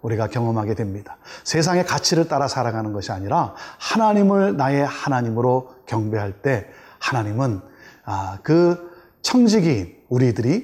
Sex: male